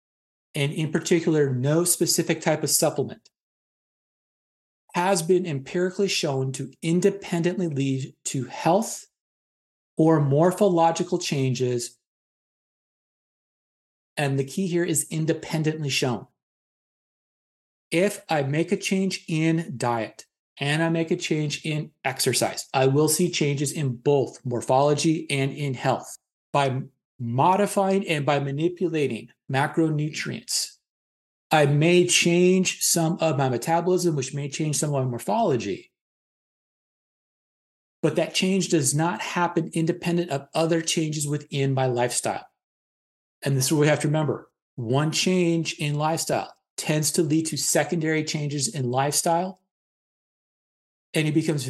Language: English